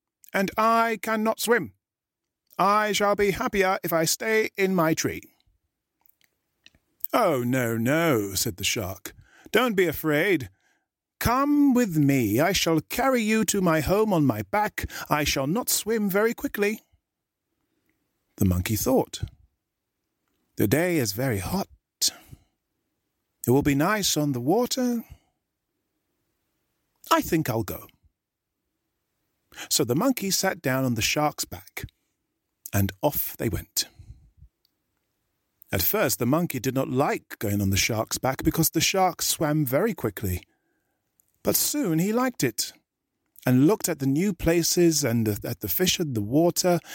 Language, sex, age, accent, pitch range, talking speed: English, male, 40-59, British, 125-205 Hz, 140 wpm